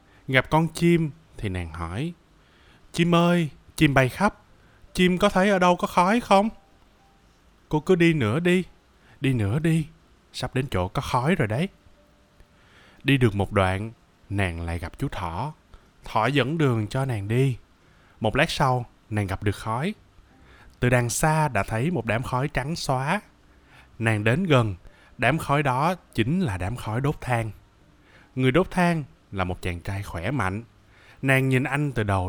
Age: 20-39